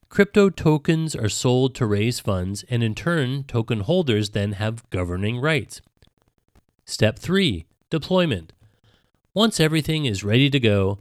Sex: male